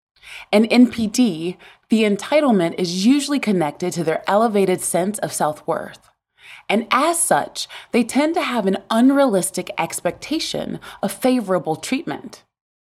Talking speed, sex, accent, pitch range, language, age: 120 wpm, female, American, 180-265 Hz, English, 20-39